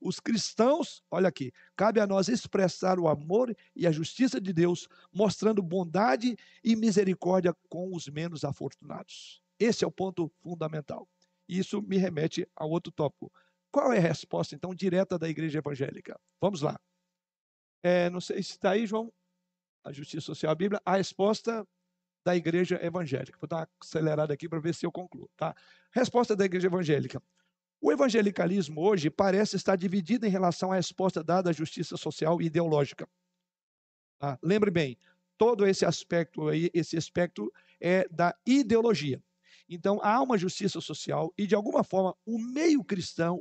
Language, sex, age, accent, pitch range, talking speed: Portuguese, male, 60-79, Brazilian, 170-205 Hz, 160 wpm